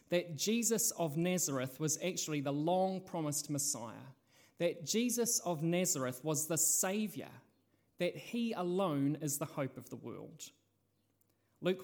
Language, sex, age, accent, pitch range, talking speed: English, male, 30-49, Australian, 140-180 Hz, 130 wpm